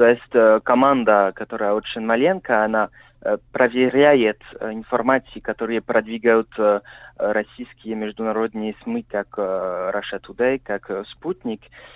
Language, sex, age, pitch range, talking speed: Russian, male, 20-39, 110-130 Hz, 95 wpm